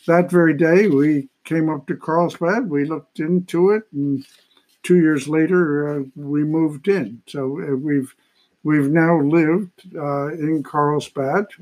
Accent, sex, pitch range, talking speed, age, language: American, male, 145-175 Hz, 150 wpm, 60-79, English